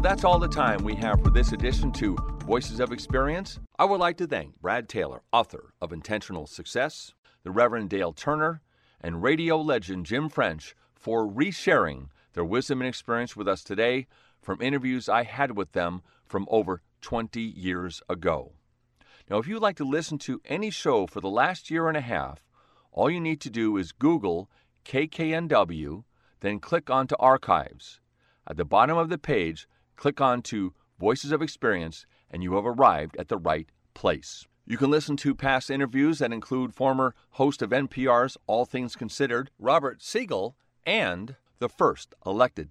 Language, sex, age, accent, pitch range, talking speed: English, male, 40-59, American, 100-140 Hz, 170 wpm